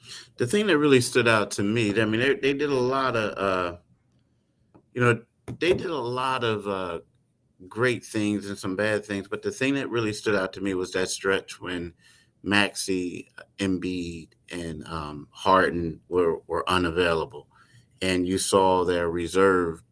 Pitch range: 95-120 Hz